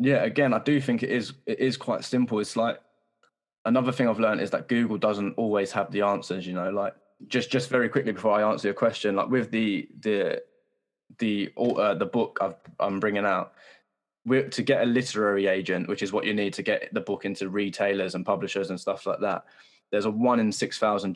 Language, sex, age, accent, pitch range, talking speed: English, male, 10-29, British, 100-120 Hz, 220 wpm